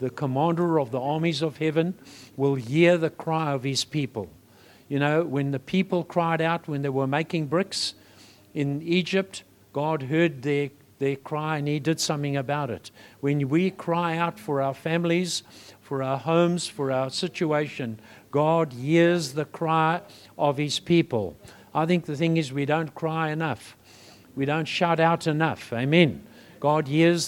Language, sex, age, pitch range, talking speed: English, male, 60-79, 130-165 Hz, 165 wpm